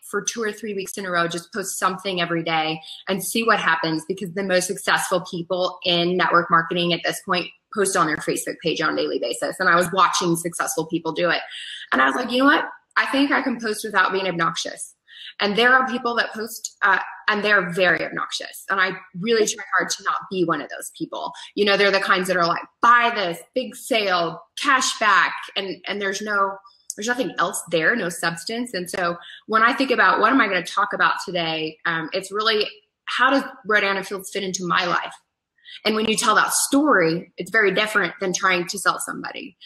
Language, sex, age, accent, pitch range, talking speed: English, female, 20-39, American, 175-215 Hz, 220 wpm